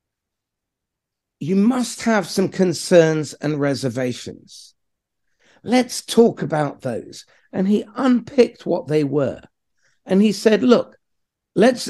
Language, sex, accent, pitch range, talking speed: English, male, British, 145-205 Hz, 110 wpm